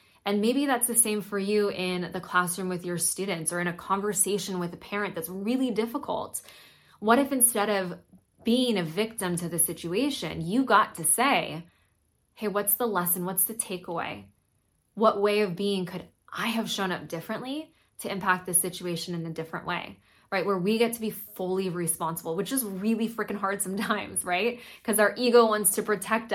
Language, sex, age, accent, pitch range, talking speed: English, female, 20-39, American, 170-215 Hz, 190 wpm